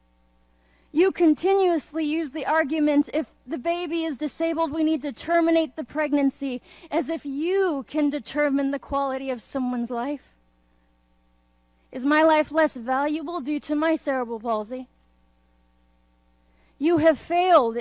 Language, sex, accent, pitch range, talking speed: Portuguese, female, American, 215-310 Hz, 130 wpm